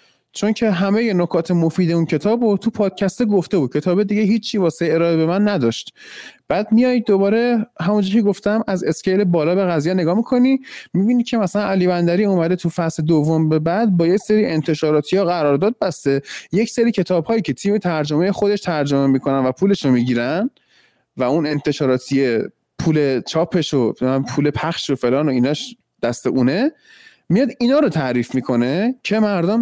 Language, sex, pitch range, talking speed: Persian, male, 150-205 Hz, 170 wpm